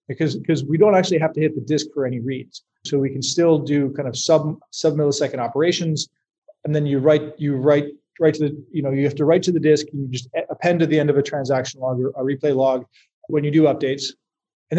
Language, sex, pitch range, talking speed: English, male, 135-155 Hz, 250 wpm